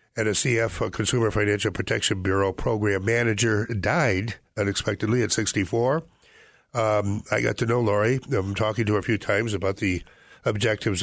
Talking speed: 165 wpm